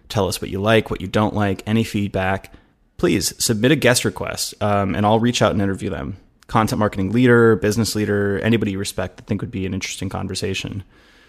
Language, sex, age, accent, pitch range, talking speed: English, male, 20-39, American, 100-120 Hz, 205 wpm